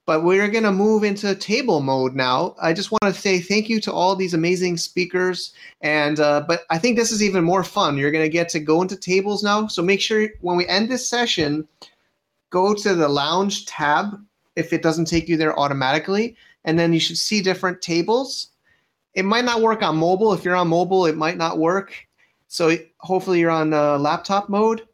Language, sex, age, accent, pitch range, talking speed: English, male, 30-49, American, 150-190 Hz, 210 wpm